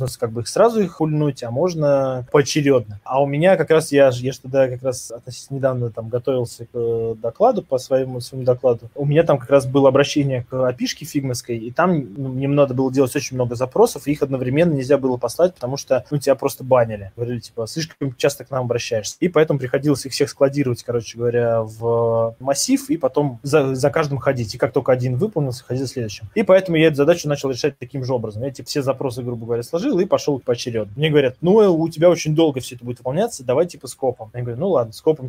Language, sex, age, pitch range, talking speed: Russian, male, 20-39, 125-155 Hz, 220 wpm